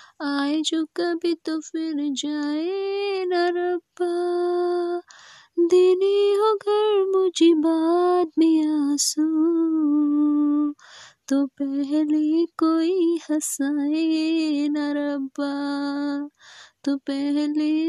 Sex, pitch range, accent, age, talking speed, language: female, 300-365 Hz, native, 20-39, 75 wpm, Hindi